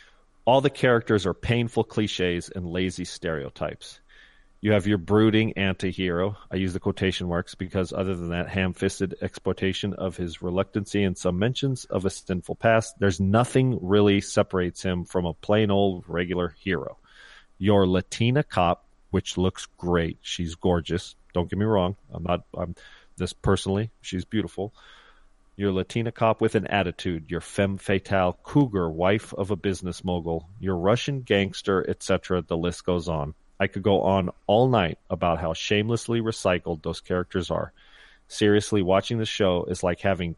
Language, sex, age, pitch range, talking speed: English, male, 40-59, 90-110 Hz, 160 wpm